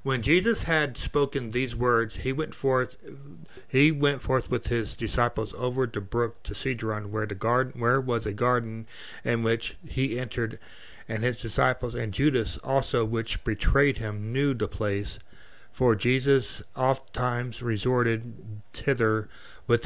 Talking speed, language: 150 wpm, English